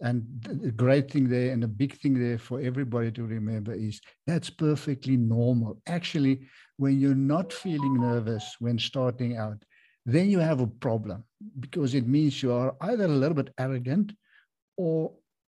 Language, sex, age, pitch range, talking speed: English, male, 60-79, 120-150 Hz, 165 wpm